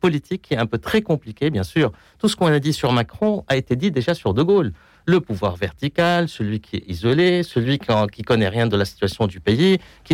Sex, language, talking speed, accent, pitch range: male, French, 235 wpm, French, 120-170 Hz